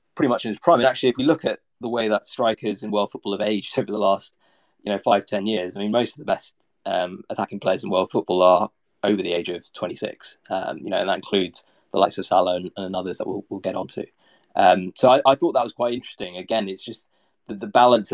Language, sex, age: English, male, 20-39